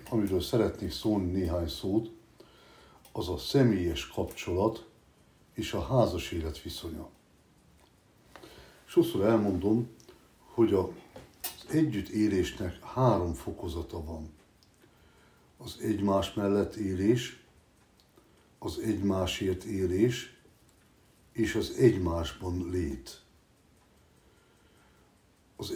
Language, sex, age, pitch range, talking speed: Hungarian, male, 60-79, 90-110 Hz, 80 wpm